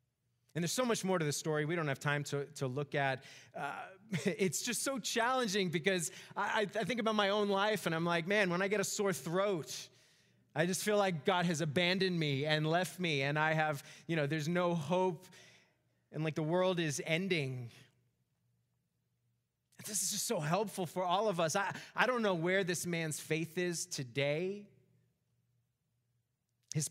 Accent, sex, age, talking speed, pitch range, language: American, male, 30-49, 185 wpm, 130-175 Hz, English